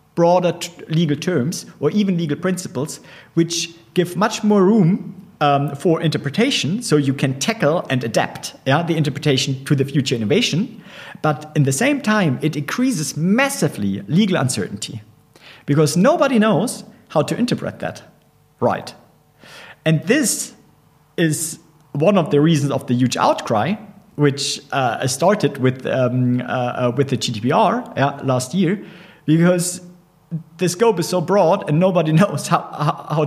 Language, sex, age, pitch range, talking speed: English, male, 50-69, 130-190 Hz, 145 wpm